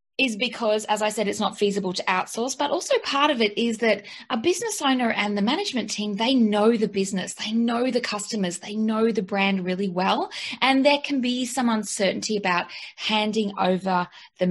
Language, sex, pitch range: English, female, 195-235 Hz